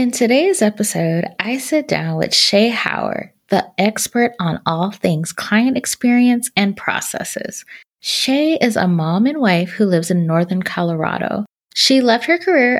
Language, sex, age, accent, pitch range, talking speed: English, female, 20-39, American, 185-245 Hz, 155 wpm